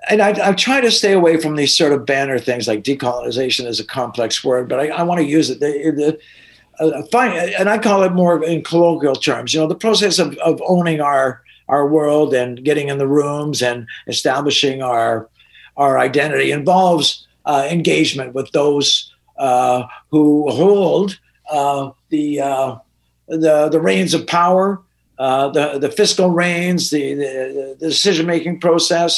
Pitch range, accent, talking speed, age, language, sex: 130-165 Hz, American, 175 wpm, 50-69, English, male